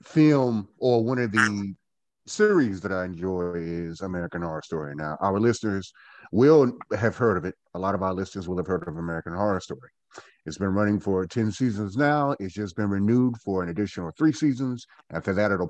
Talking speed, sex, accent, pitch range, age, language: 200 wpm, male, American, 95-125 Hz, 30-49, English